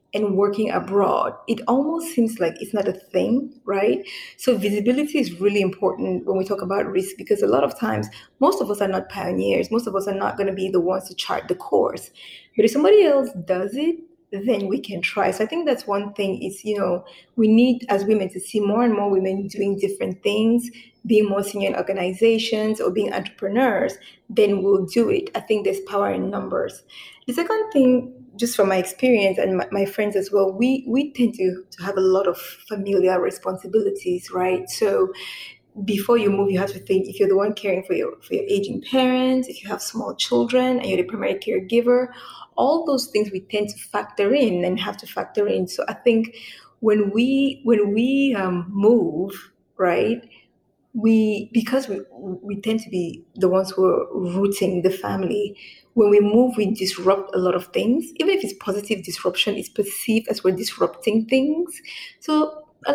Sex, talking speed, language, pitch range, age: female, 200 wpm, English, 195-255 Hz, 20-39